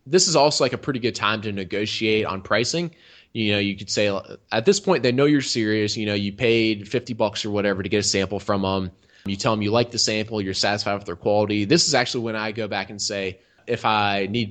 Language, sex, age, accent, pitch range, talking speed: English, male, 20-39, American, 105-130 Hz, 255 wpm